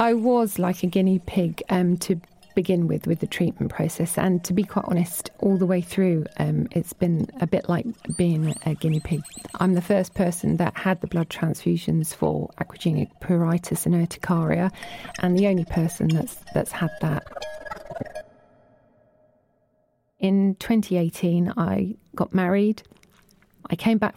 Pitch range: 170-190 Hz